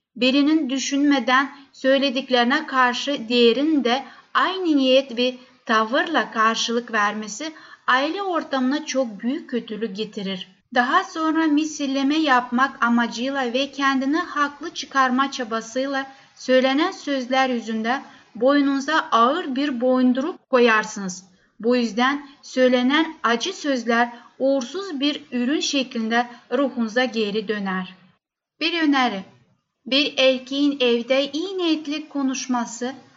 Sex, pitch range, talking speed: female, 235-285 Hz, 100 wpm